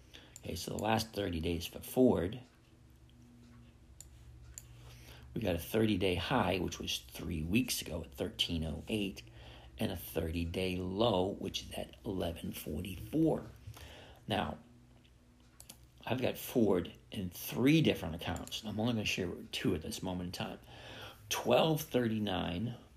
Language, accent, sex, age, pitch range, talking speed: English, American, male, 50-69, 85-120 Hz, 135 wpm